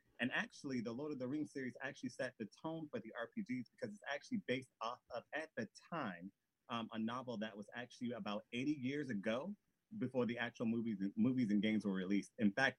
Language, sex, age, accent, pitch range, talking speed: English, male, 30-49, American, 105-135 Hz, 215 wpm